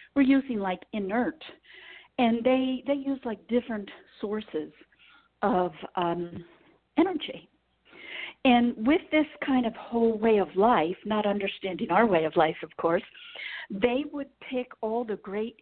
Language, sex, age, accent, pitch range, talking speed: English, female, 50-69, American, 185-250 Hz, 140 wpm